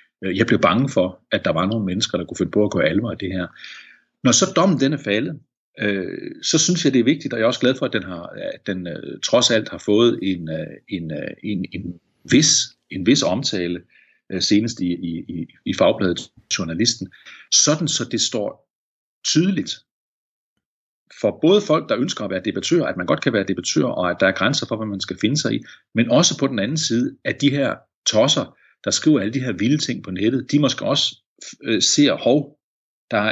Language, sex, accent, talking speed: Danish, male, native, 210 wpm